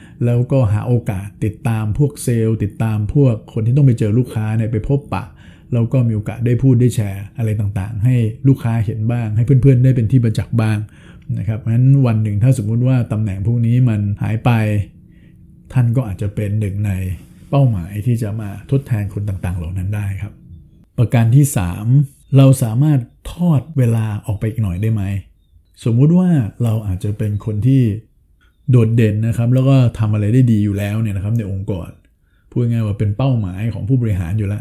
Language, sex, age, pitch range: Thai, male, 60-79, 105-120 Hz